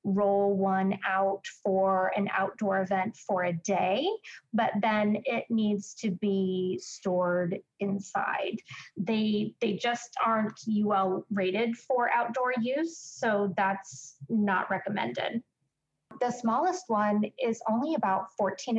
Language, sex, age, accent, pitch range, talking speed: English, female, 20-39, American, 190-240 Hz, 120 wpm